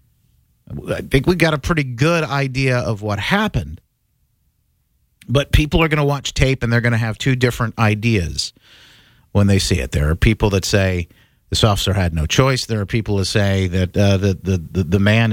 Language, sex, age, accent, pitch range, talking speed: English, male, 50-69, American, 105-165 Hz, 205 wpm